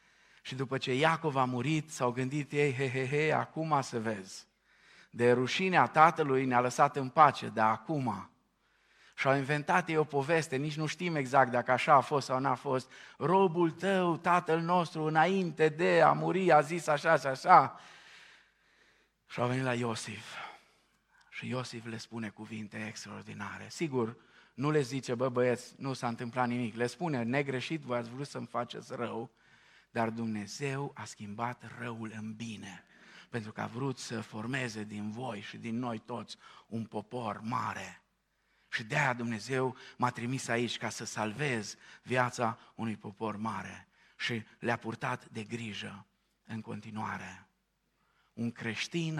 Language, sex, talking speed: Romanian, male, 155 wpm